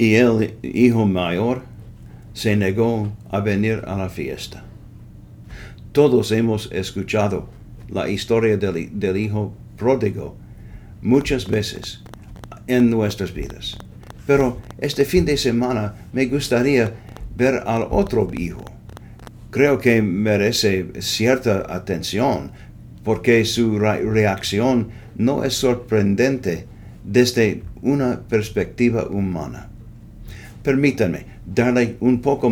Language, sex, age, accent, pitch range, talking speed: English, male, 60-79, Finnish, 105-125 Hz, 100 wpm